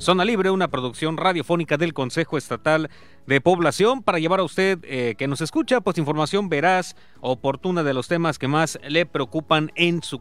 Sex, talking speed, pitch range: male, 180 wpm, 140-180 Hz